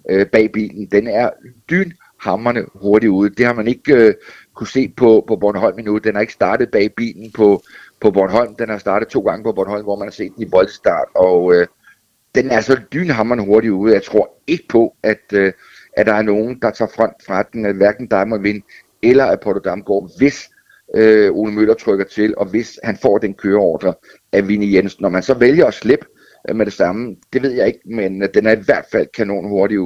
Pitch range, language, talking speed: 100-120 Hz, Danish, 215 wpm